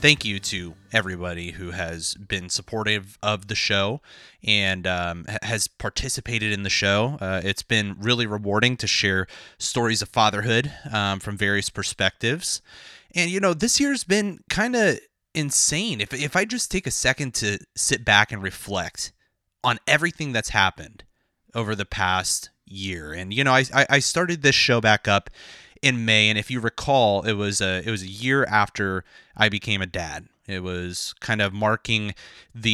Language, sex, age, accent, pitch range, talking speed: English, male, 30-49, American, 100-125 Hz, 175 wpm